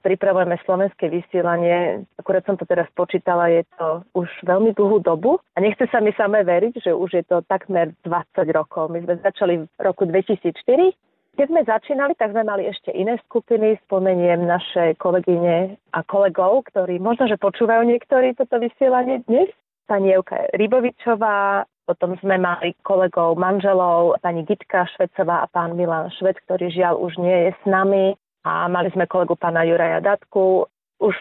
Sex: female